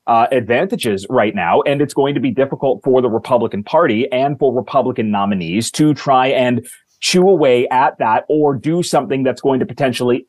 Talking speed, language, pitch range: 185 wpm, English, 115-140 Hz